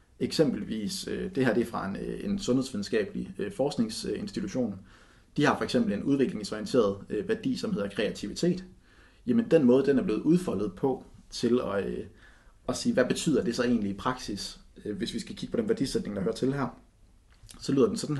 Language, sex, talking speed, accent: Danish, male, 175 wpm, native